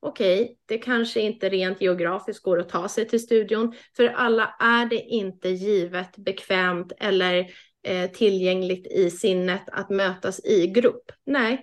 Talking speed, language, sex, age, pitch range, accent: 150 wpm, Swedish, female, 30-49, 185-230 Hz, native